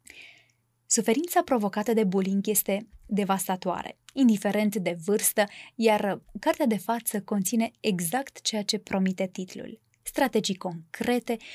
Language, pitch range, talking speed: Romanian, 195-250 Hz, 110 wpm